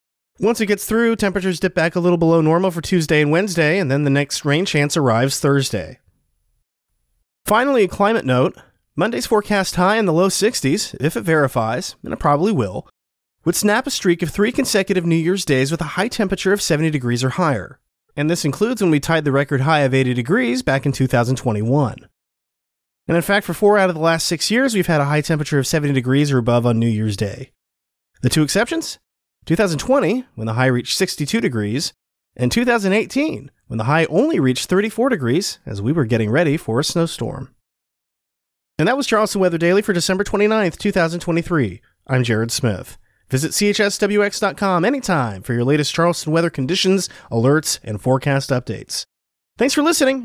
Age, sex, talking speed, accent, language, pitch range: 30-49, male, 185 wpm, American, English, 130-195 Hz